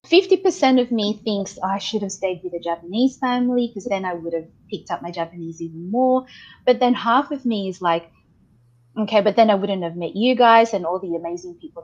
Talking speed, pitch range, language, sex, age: 220 wpm, 180-240 Hz, English, female, 20-39